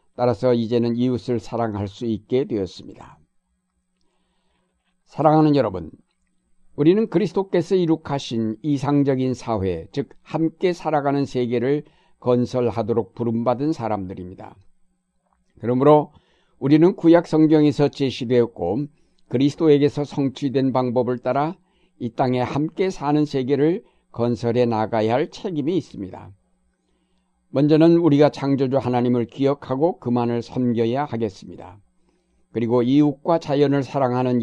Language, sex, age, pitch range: Korean, male, 60-79, 115-145 Hz